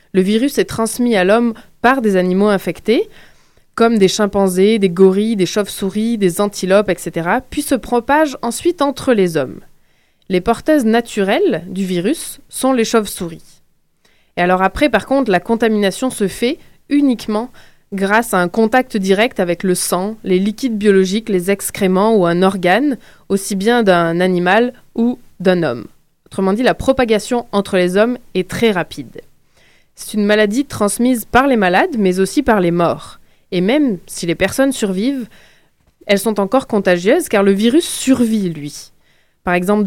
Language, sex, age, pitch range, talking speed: French, female, 20-39, 190-240 Hz, 160 wpm